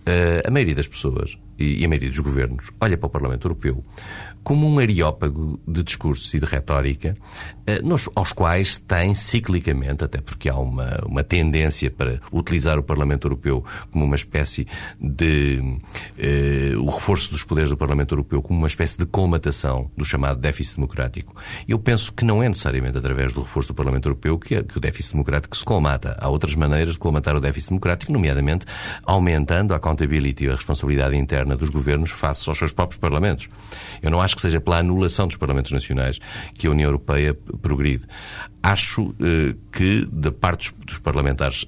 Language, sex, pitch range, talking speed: Portuguese, male, 70-95 Hz, 175 wpm